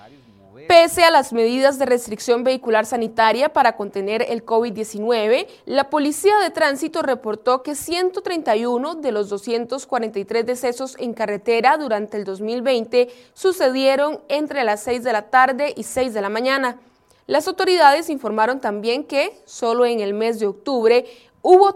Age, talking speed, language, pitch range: 20-39, 145 wpm, Spanish, 210-290 Hz